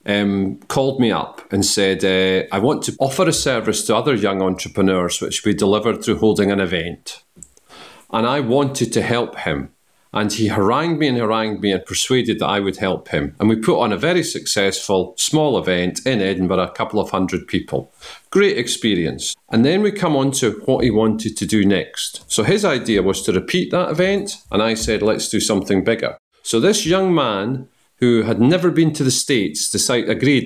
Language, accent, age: English, British, 40-59